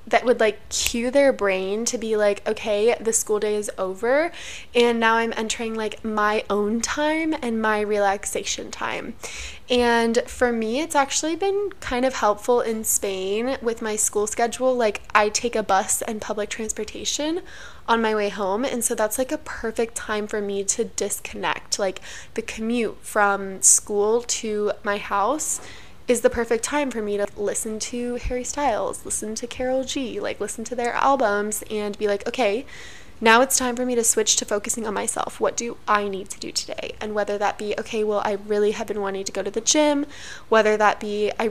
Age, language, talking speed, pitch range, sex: 20-39, English, 195 wpm, 210-245 Hz, female